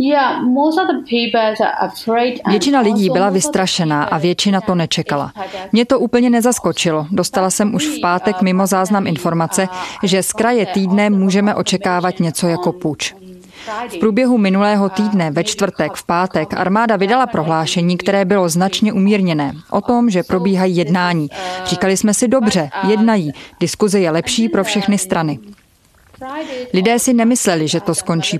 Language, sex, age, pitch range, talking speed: Czech, female, 20-39, 170-210 Hz, 140 wpm